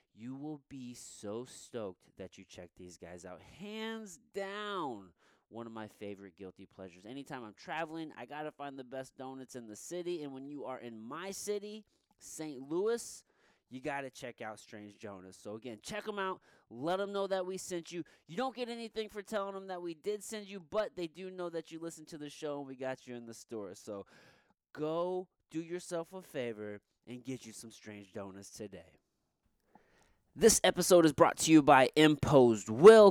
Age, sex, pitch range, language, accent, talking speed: 20-39, male, 125-185 Hz, English, American, 200 wpm